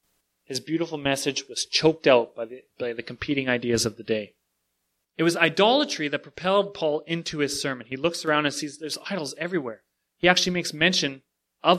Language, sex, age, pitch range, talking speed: English, male, 30-49, 135-195 Hz, 185 wpm